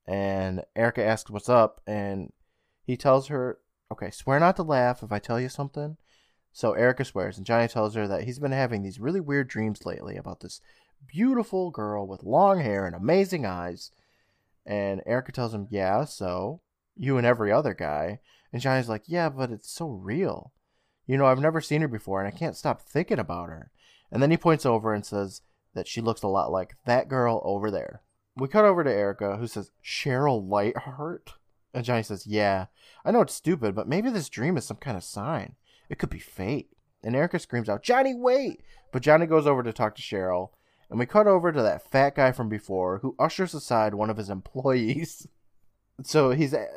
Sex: male